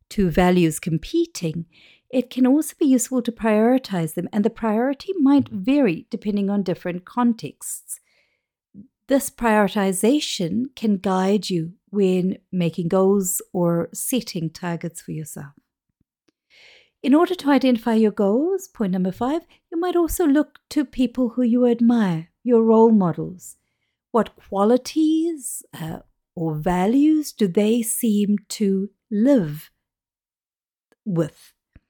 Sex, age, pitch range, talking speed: female, 50-69, 185-255 Hz, 120 wpm